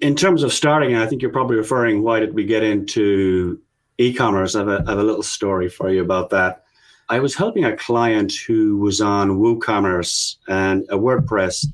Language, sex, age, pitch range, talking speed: English, male, 30-49, 95-120 Hz, 200 wpm